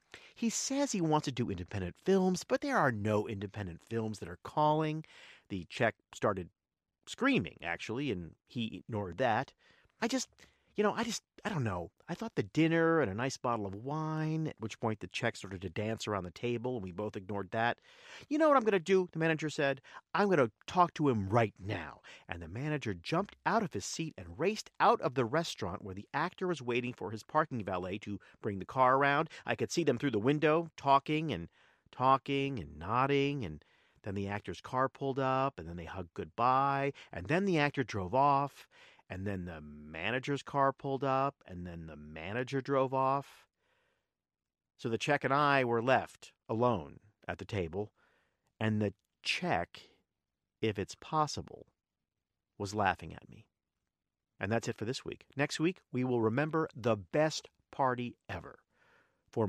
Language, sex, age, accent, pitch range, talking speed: English, male, 50-69, American, 100-150 Hz, 190 wpm